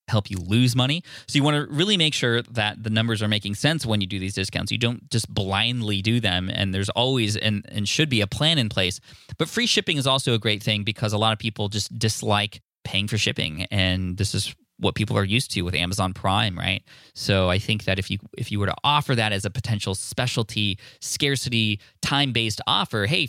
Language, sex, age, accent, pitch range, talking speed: English, male, 20-39, American, 100-125 Hz, 230 wpm